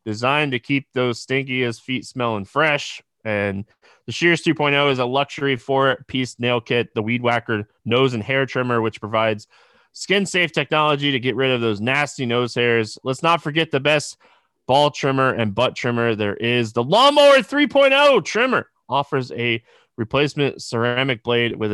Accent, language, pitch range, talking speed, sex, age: American, English, 120-150 Hz, 165 wpm, male, 20-39